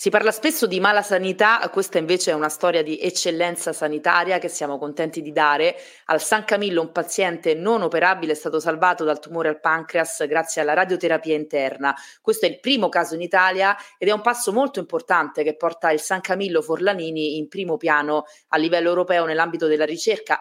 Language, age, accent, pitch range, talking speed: Italian, 30-49, native, 155-195 Hz, 190 wpm